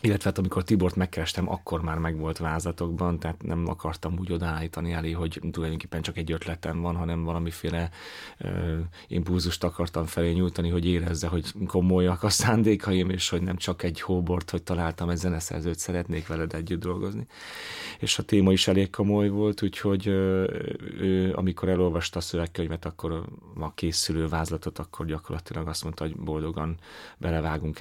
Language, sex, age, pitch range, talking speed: Hungarian, male, 30-49, 80-90 Hz, 160 wpm